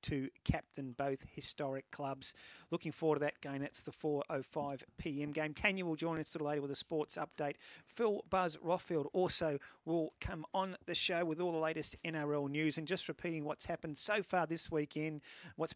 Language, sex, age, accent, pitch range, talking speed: English, male, 40-59, Australian, 145-170 Hz, 185 wpm